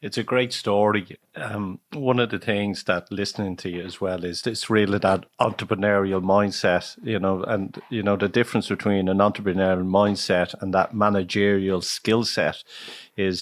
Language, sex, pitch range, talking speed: English, male, 95-110 Hz, 170 wpm